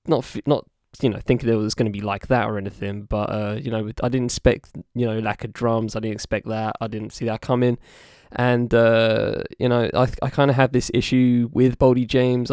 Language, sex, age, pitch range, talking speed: English, male, 10-29, 110-135 Hz, 235 wpm